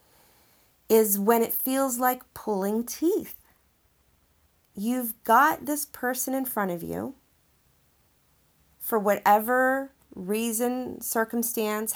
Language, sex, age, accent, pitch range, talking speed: English, female, 30-49, American, 160-215 Hz, 95 wpm